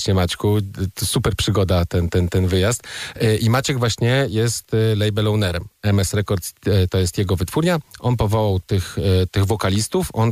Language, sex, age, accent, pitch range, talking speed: Polish, male, 40-59, native, 100-120 Hz, 145 wpm